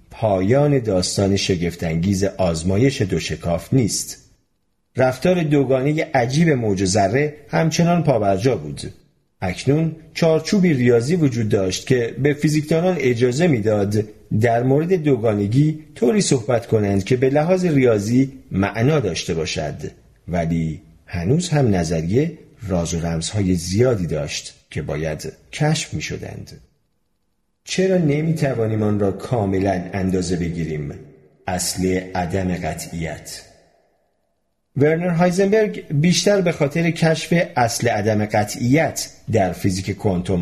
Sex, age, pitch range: male, 40-59, 95-150 Hz